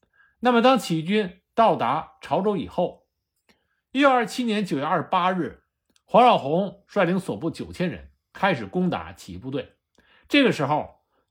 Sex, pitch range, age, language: male, 150-230 Hz, 50-69, Chinese